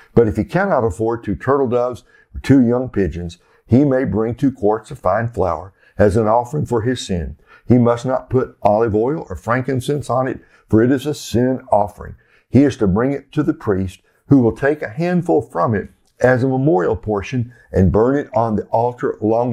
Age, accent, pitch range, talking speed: 60-79, American, 105-130 Hz, 210 wpm